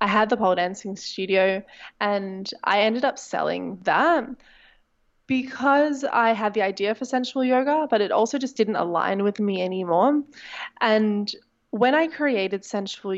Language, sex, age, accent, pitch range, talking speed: English, female, 20-39, Australian, 200-265 Hz, 155 wpm